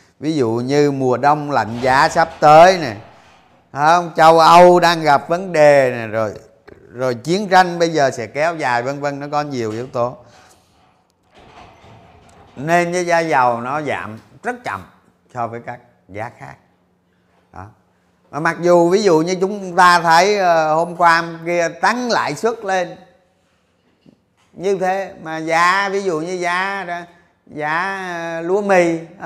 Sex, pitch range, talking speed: male, 120-180 Hz, 150 wpm